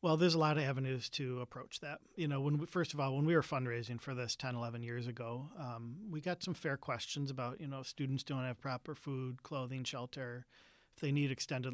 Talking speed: 240 wpm